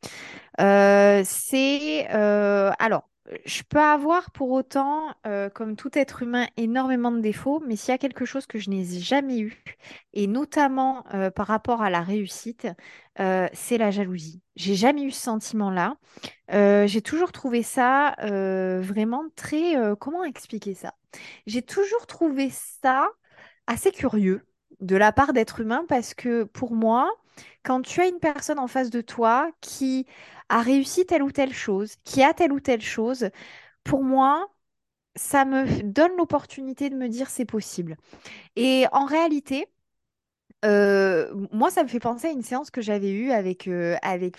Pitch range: 205-275 Hz